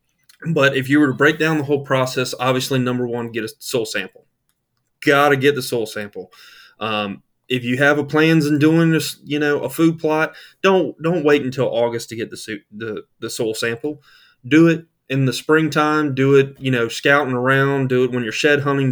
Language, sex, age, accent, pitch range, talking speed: English, male, 20-39, American, 115-145 Hz, 215 wpm